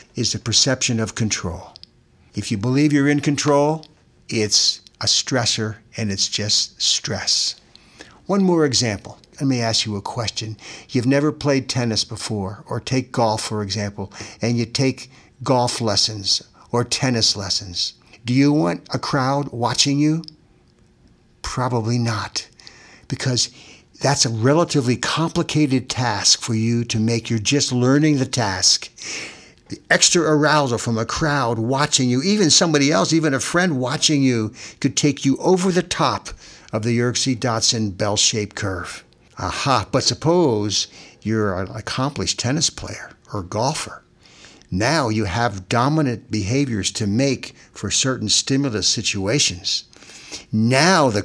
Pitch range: 110-140 Hz